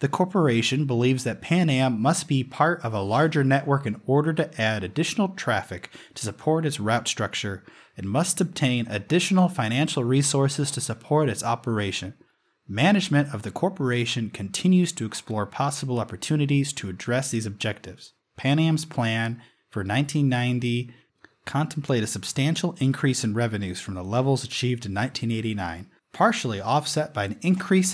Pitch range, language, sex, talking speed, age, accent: 110-160 Hz, English, male, 150 wpm, 30-49, American